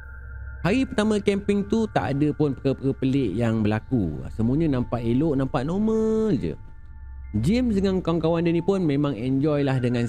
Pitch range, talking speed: 115-170 Hz, 160 wpm